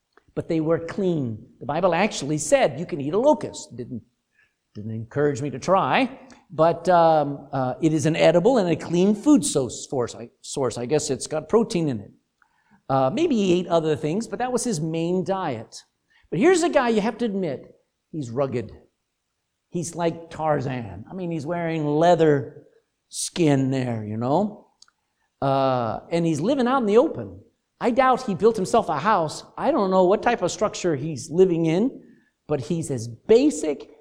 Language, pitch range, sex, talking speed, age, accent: English, 140-205 Hz, male, 180 wpm, 50-69, American